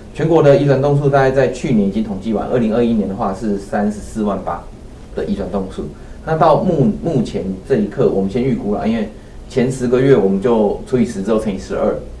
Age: 30-49